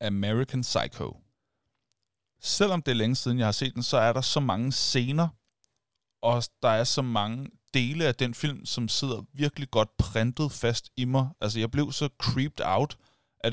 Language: Danish